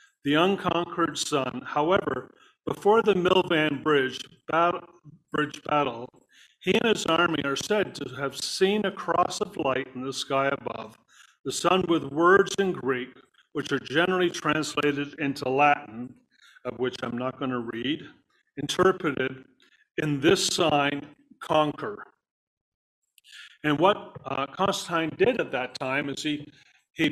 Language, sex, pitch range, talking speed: English, male, 140-185 Hz, 135 wpm